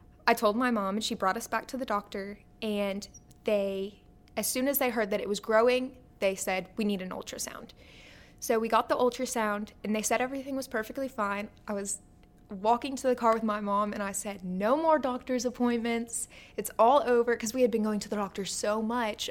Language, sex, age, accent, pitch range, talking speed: English, female, 20-39, American, 200-240 Hz, 220 wpm